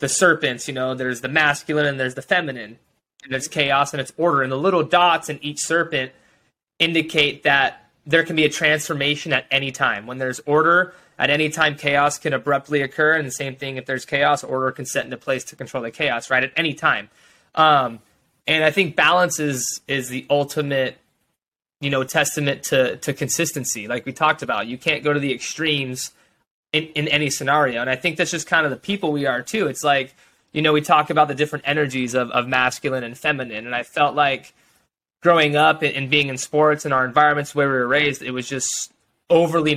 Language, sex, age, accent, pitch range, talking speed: English, male, 20-39, American, 130-155 Hz, 215 wpm